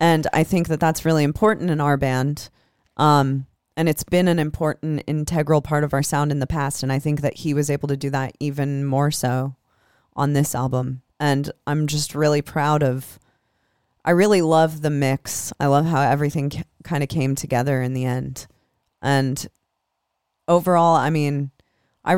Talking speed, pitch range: 180 wpm, 140-175 Hz